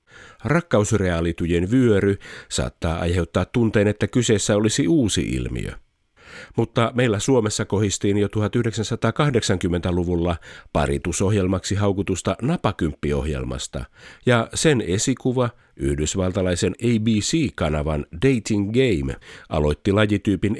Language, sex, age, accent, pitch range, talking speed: Finnish, male, 50-69, native, 90-120 Hz, 80 wpm